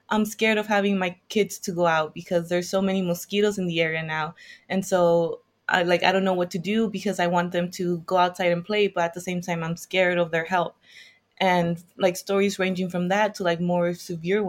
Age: 20-39